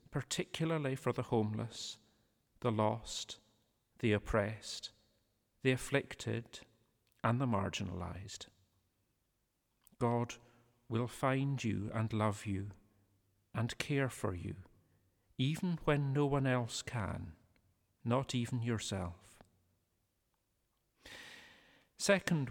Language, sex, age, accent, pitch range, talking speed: English, male, 40-59, British, 100-130 Hz, 90 wpm